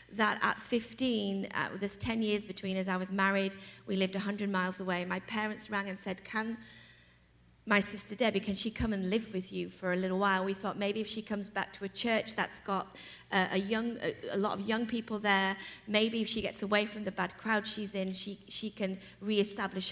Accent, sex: British, female